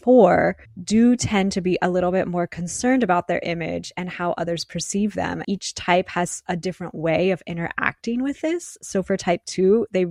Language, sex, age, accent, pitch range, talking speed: English, female, 20-39, American, 170-195 Hz, 195 wpm